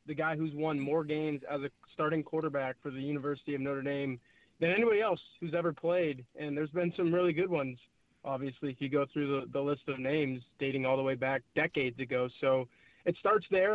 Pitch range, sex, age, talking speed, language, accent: 145-170 Hz, male, 20-39, 220 wpm, English, American